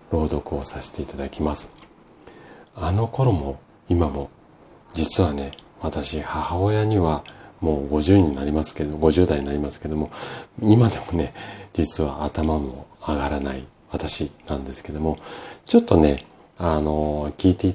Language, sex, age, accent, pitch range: Japanese, male, 40-59, native, 75-100 Hz